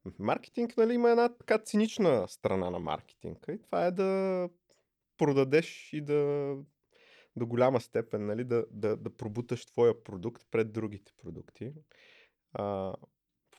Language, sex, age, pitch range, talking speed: Bulgarian, male, 20-39, 100-130 Hz, 135 wpm